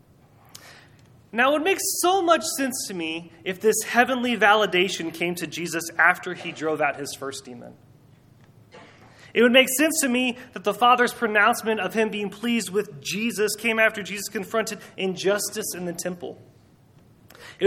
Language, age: English, 20-39